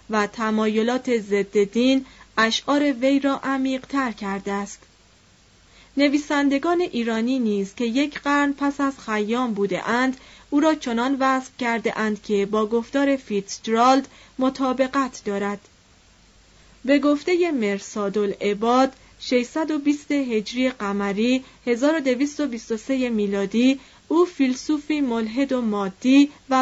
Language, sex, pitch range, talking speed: Persian, female, 210-275 Hz, 110 wpm